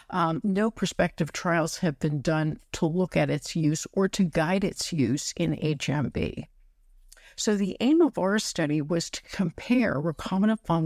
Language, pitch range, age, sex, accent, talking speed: English, 155-185 Hz, 50-69, female, American, 165 wpm